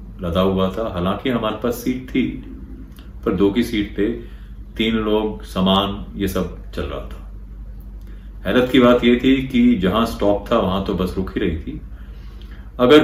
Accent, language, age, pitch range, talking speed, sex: native, Hindi, 30-49, 75-105 Hz, 170 wpm, male